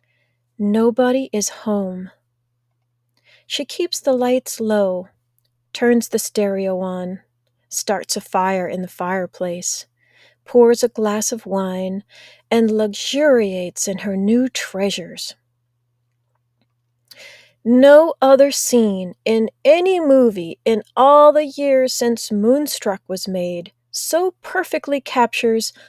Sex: female